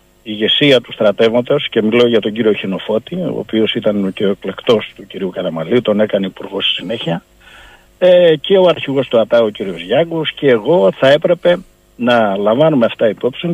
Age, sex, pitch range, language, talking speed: 60-79, male, 110-165 Hz, Greek, 180 wpm